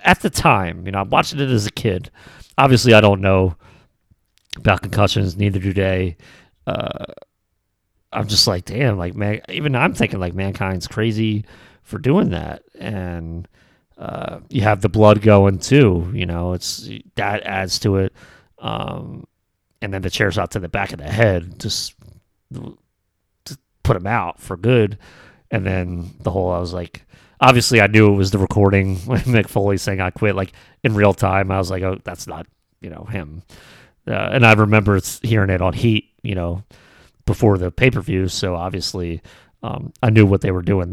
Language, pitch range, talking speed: English, 95-110 Hz, 185 wpm